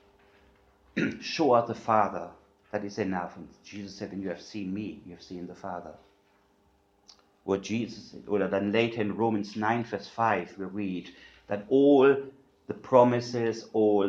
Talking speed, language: 165 wpm, English